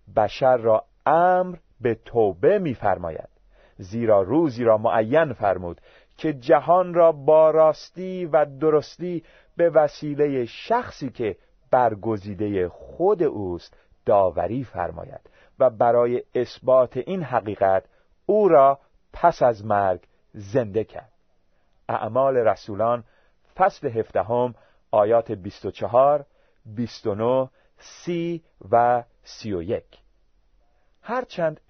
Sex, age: male, 40-59